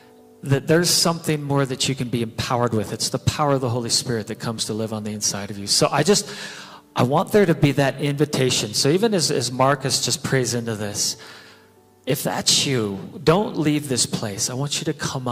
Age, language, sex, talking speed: 40-59, English, male, 225 wpm